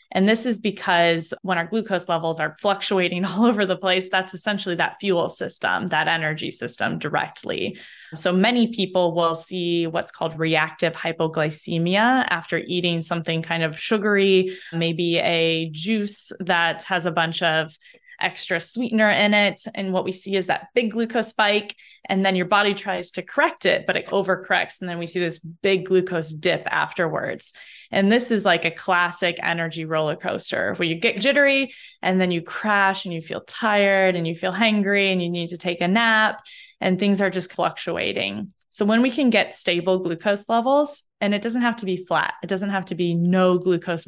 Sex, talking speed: female, 190 wpm